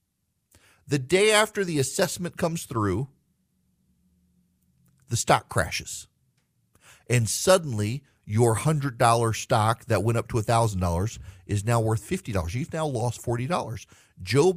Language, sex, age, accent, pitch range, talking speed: English, male, 40-59, American, 105-150 Hz, 120 wpm